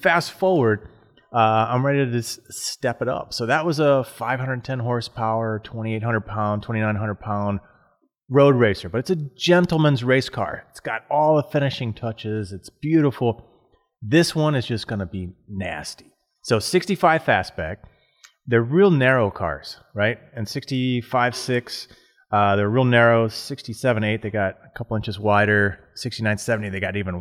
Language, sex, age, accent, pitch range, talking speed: English, male, 30-49, American, 105-140 Hz, 155 wpm